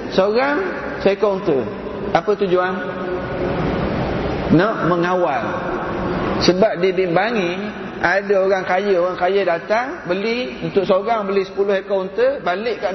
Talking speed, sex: 100 wpm, male